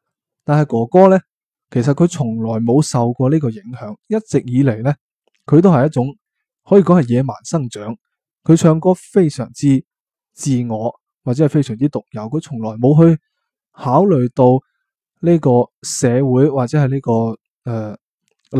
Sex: male